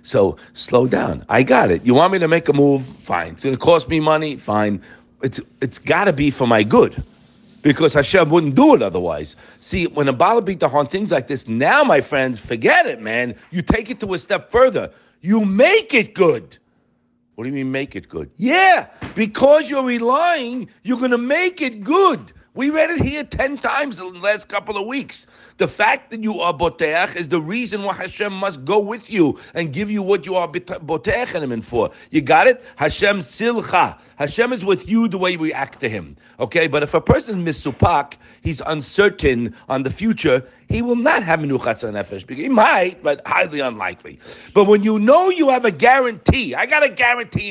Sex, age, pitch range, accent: male, 50-69, 150-235 Hz, American